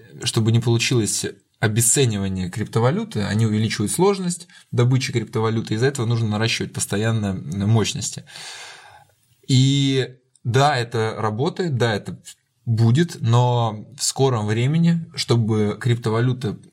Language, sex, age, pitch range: Russian, male, 20-39, 105-130 Hz